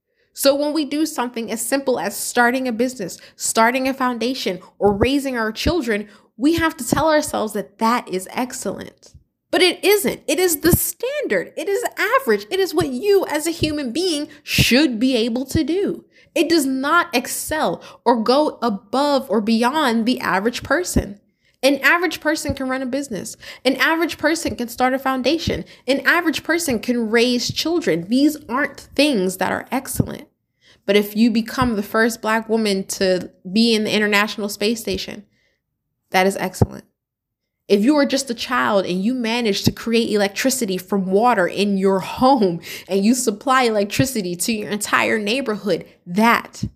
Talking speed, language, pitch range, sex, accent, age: 170 wpm, English, 205-280 Hz, female, American, 20-39